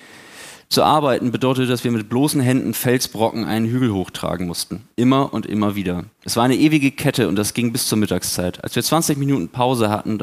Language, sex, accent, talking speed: German, male, German, 205 wpm